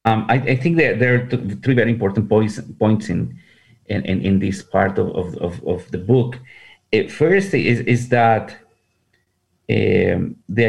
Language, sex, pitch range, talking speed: English, male, 95-120 Hz, 170 wpm